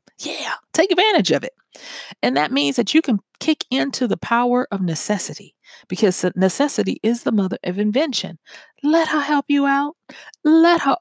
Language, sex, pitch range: English, female, 185-275 Hz